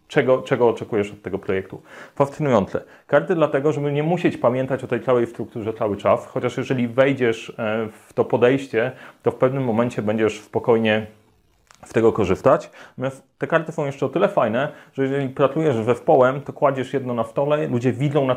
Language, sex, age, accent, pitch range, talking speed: Polish, male, 30-49, native, 115-145 Hz, 180 wpm